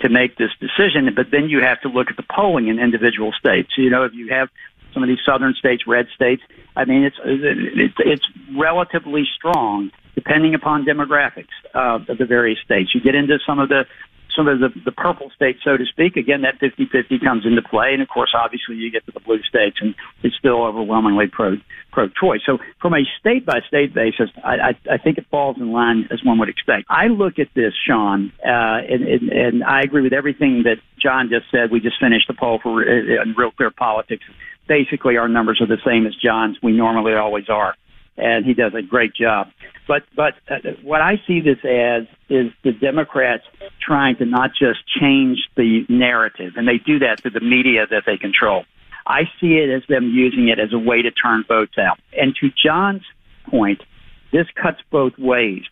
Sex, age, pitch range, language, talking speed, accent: male, 60-79, 115-140 Hz, English, 200 wpm, American